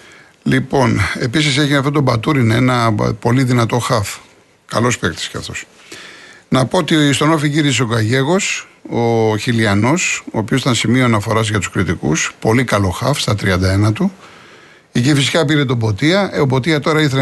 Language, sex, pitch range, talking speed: Greek, male, 120-160 Hz, 165 wpm